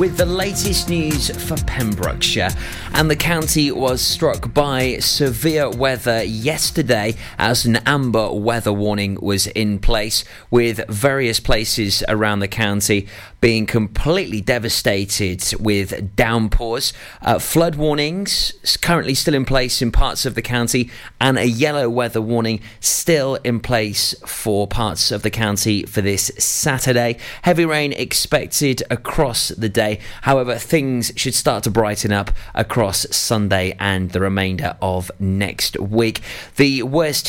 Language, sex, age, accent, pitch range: Japanese, male, 30-49, British, 105-130 Hz